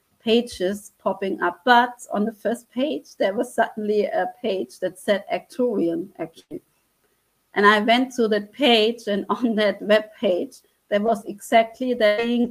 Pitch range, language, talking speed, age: 200-235 Hz, English, 160 wpm, 30-49